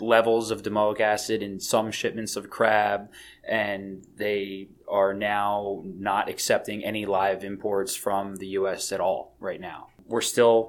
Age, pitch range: 20-39, 100-110 Hz